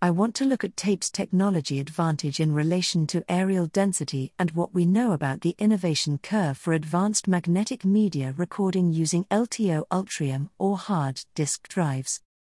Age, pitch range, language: 40-59, 155-210 Hz, English